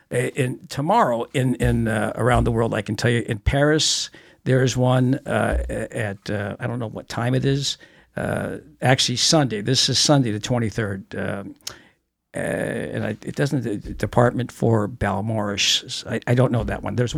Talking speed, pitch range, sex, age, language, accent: 180 wpm, 115-150 Hz, male, 60-79, English, American